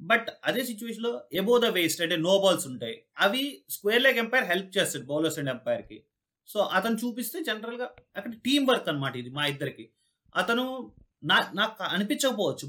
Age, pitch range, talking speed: 30-49, 160-225 Hz, 165 wpm